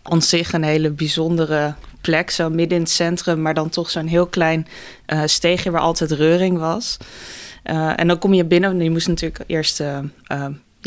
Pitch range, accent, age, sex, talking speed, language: 160-180 Hz, Dutch, 20-39, female, 200 wpm, Dutch